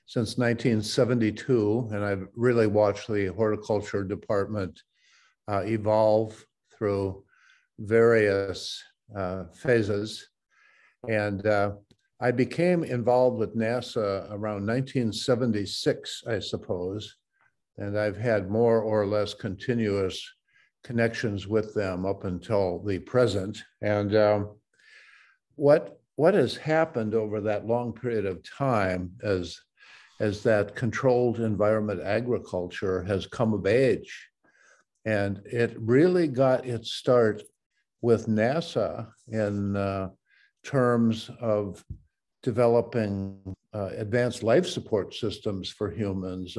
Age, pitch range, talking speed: 50-69, 100-120 Hz, 105 wpm